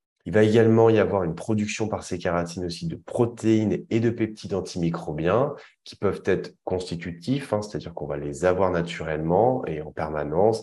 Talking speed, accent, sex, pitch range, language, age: 175 wpm, French, male, 85-105 Hz, French, 30-49